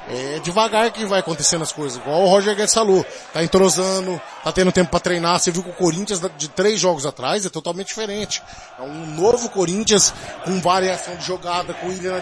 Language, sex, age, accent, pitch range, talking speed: Portuguese, male, 20-39, Brazilian, 165-195 Hz, 210 wpm